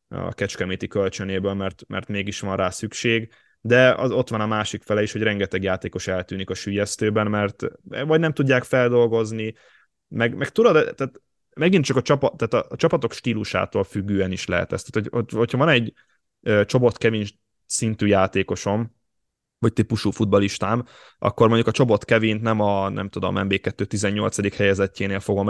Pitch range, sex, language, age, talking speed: 100-115 Hz, male, Hungarian, 20-39, 160 wpm